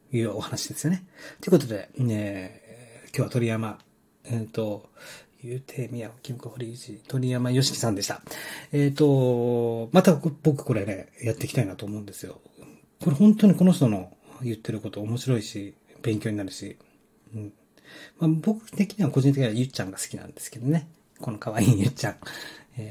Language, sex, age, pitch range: Japanese, male, 40-59, 110-150 Hz